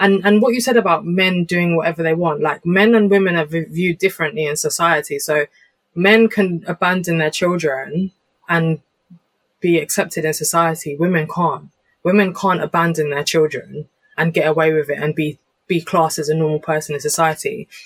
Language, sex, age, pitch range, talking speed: English, female, 20-39, 160-200 Hz, 180 wpm